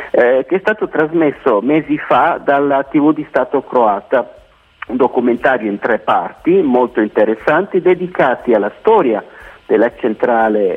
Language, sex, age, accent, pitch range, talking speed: Italian, male, 50-69, native, 115-155 Hz, 135 wpm